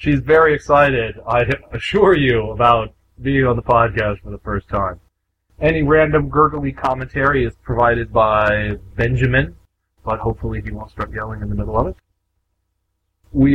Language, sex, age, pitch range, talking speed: English, male, 30-49, 95-125 Hz, 155 wpm